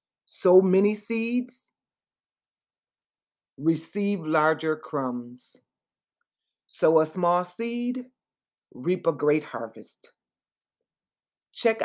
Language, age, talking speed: English, 40-59, 75 wpm